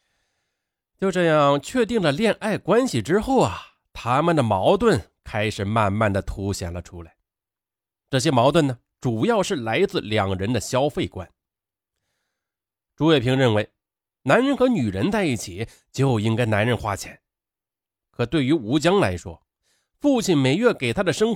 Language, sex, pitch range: Chinese, male, 100-165 Hz